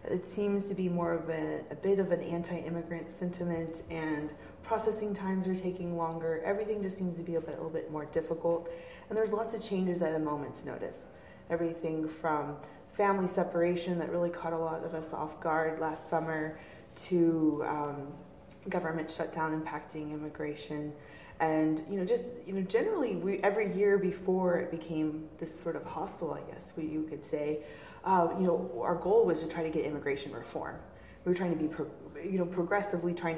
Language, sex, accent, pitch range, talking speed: English, female, American, 155-180 Hz, 190 wpm